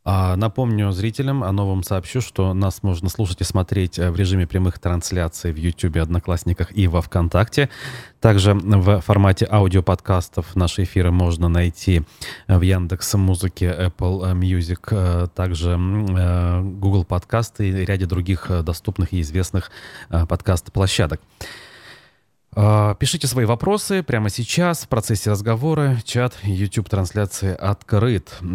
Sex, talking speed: male, 115 wpm